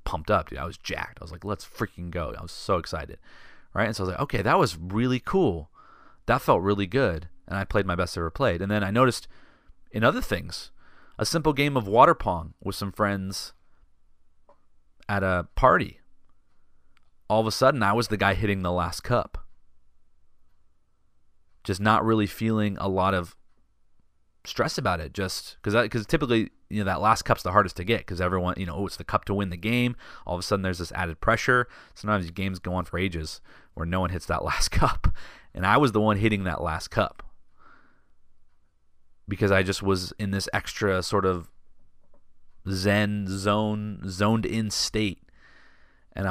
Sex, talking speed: male, 190 wpm